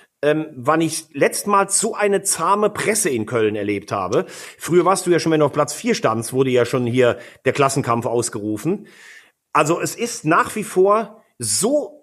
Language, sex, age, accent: German, male, 40-59, German